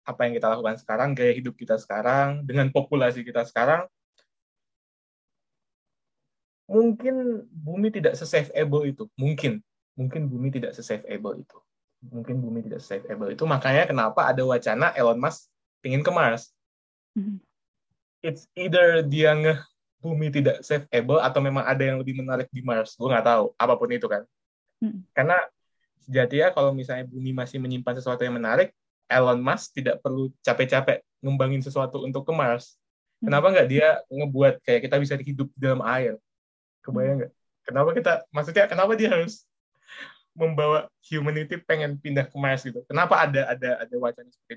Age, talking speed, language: 20-39, 145 wpm, Indonesian